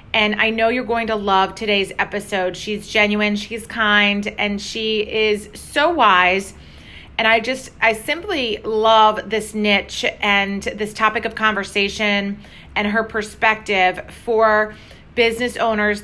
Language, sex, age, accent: English, female, 30-49, American